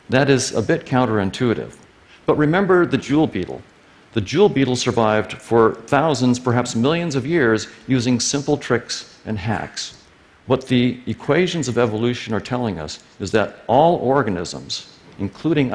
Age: 50-69